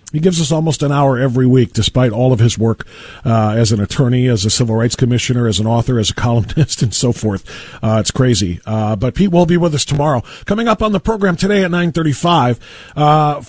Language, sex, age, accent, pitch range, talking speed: English, male, 40-59, American, 115-160 Hz, 225 wpm